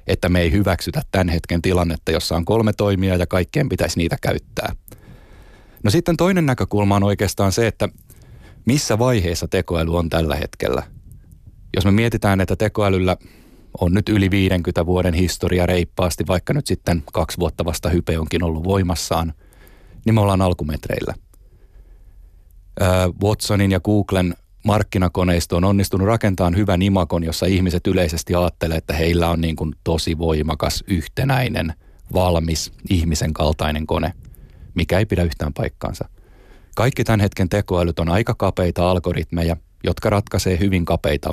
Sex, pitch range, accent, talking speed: male, 85-100 Hz, native, 140 wpm